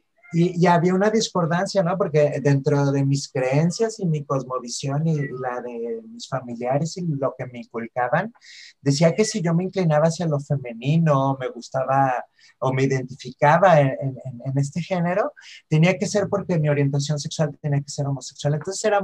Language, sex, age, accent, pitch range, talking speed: Spanish, male, 30-49, Mexican, 135-170 Hz, 175 wpm